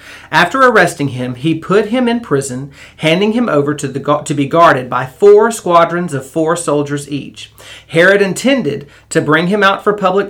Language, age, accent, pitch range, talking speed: English, 40-59, American, 135-170 Hz, 180 wpm